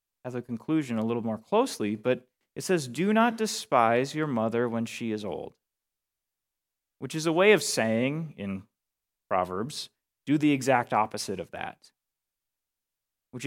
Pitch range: 115-160 Hz